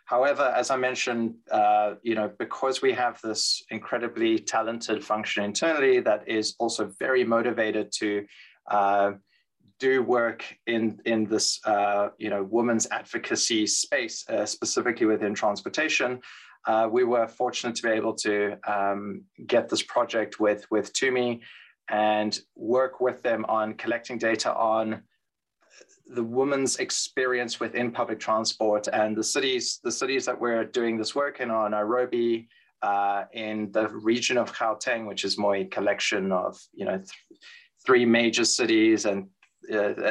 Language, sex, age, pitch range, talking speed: English, male, 20-39, 105-125 Hz, 150 wpm